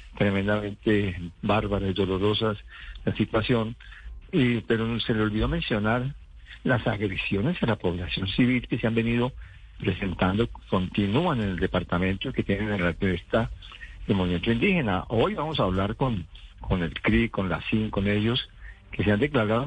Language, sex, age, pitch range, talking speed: Spanish, male, 60-79, 95-125 Hz, 155 wpm